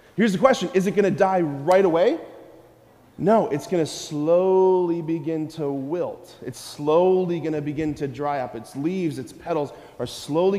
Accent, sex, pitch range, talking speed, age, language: American, male, 165-230 Hz, 180 wpm, 30-49, English